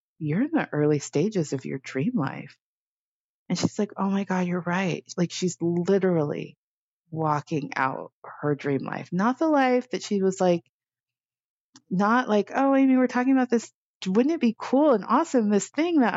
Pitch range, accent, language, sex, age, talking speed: 150-200 Hz, American, English, female, 30-49, 180 wpm